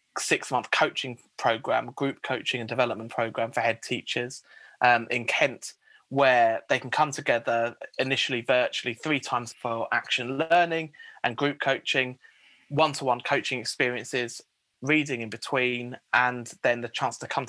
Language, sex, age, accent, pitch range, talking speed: English, male, 20-39, British, 120-145 Hz, 140 wpm